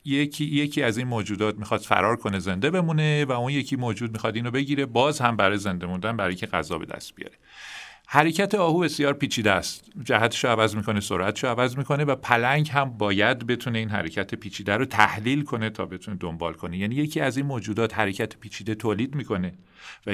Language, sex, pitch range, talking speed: Persian, male, 105-145 Hz, 195 wpm